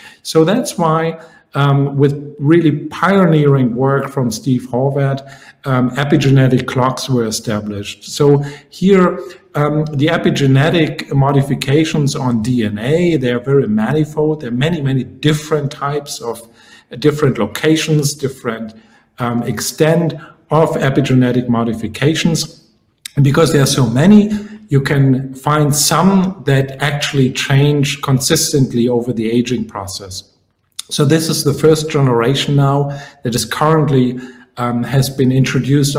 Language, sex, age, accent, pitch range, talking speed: English, male, 50-69, German, 125-155 Hz, 125 wpm